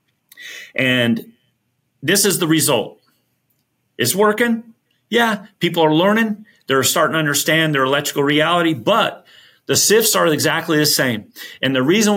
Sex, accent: male, American